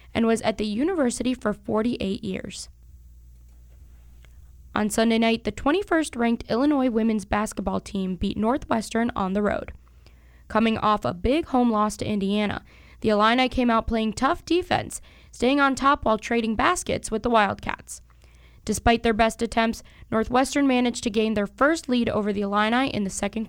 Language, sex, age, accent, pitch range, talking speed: English, female, 10-29, American, 210-250 Hz, 160 wpm